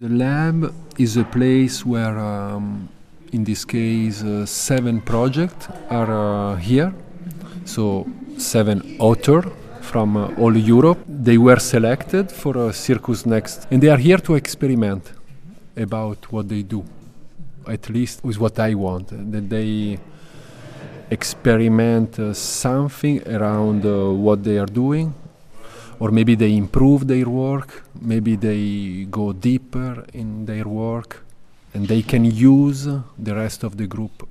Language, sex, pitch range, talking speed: Czech, male, 105-130 Hz, 140 wpm